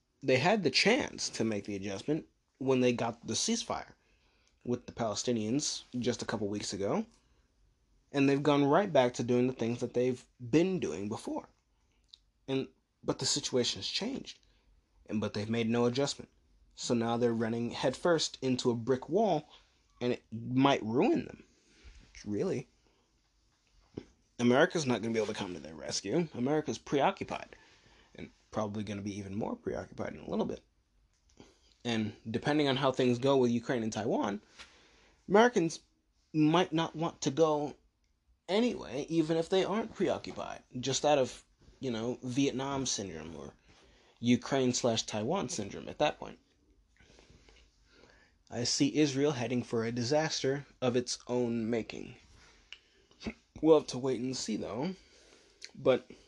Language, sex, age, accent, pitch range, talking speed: English, male, 20-39, American, 110-140 Hz, 150 wpm